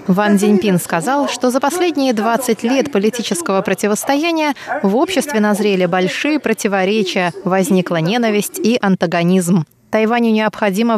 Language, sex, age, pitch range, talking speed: Russian, female, 20-39, 185-235 Hz, 115 wpm